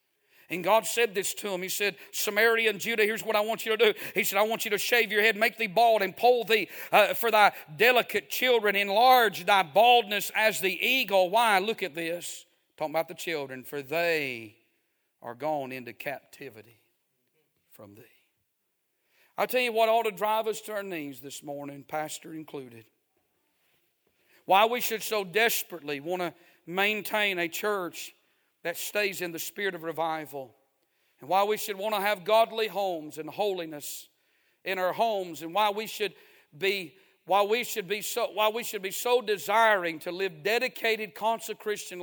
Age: 50-69